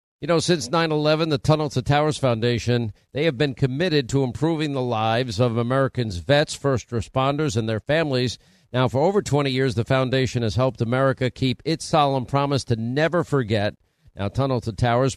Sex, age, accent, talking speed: male, 50-69, American, 180 wpm